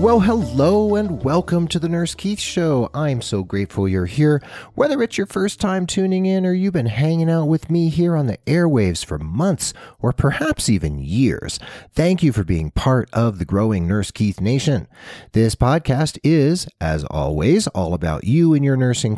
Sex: male